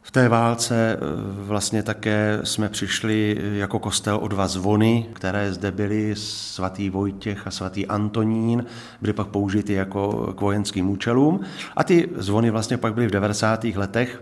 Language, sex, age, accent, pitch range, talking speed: Czech, male, 50-69, native, 100-120 Hz, 150 wpm